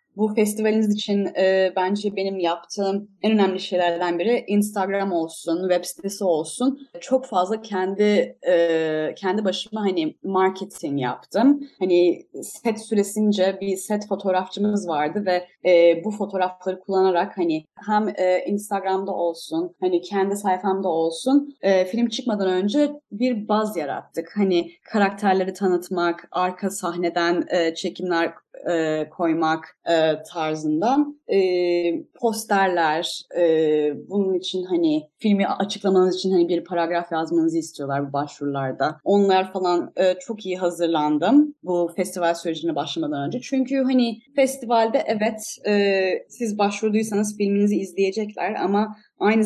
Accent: native